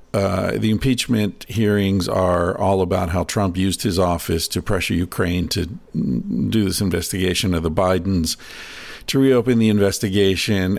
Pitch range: 90-115 Hz